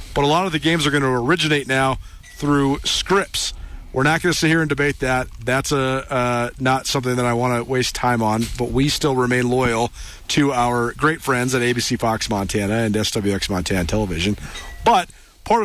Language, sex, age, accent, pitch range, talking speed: English, male, 40-59, American, 125-175 Hz, 200 wpm